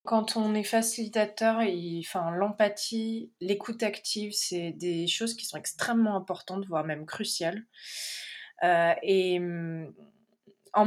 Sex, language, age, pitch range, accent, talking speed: female, French, 20-39, 165-205 Hz, French, 120 wpm